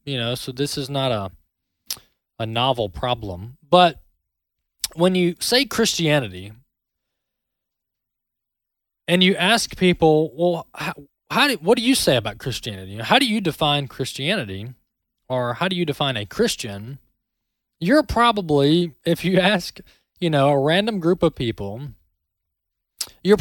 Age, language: 20-39, English